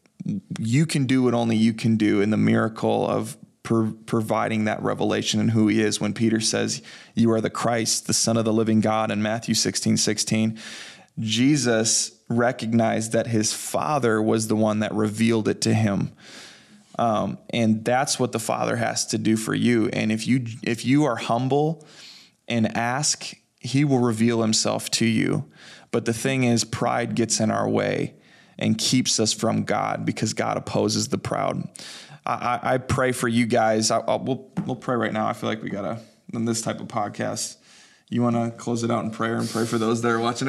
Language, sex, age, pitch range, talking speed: English, male, 20-39, 110-125 Hz, 200 wpm